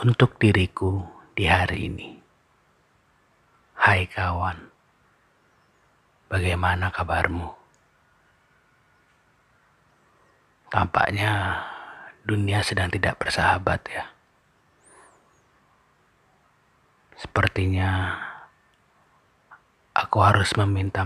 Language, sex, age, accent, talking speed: Indonesian, male, 40-59, native, 55 wpm